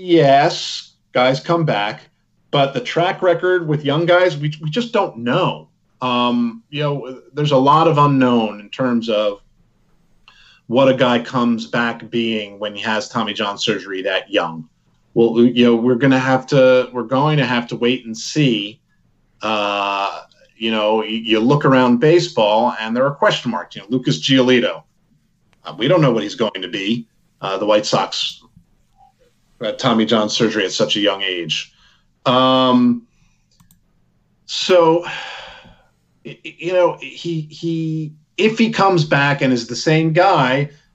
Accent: American